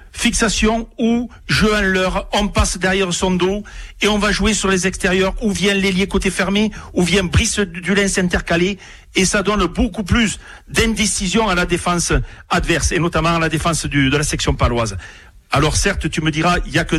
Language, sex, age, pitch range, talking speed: French, male, 60-79, 165-200 Hz, 200 wpm